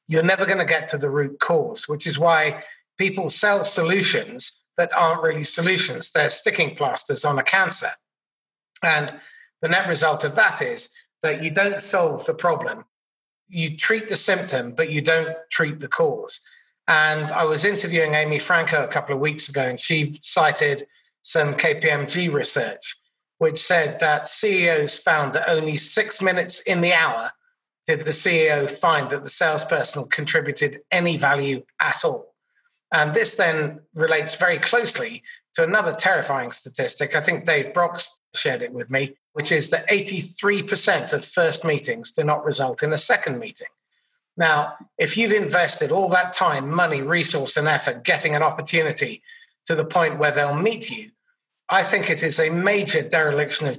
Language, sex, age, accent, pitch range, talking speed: English, male, 30-49, British, 155-215 Hz, 165 wpm